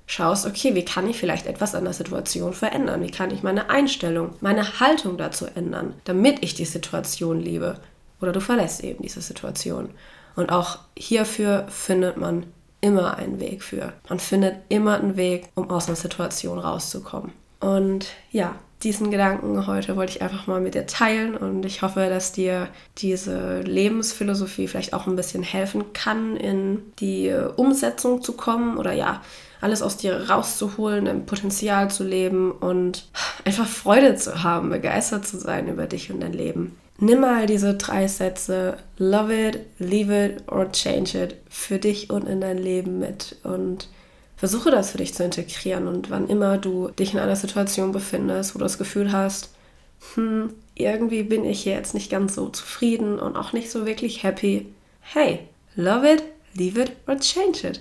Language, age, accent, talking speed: German, 20-39, German, 170 wpm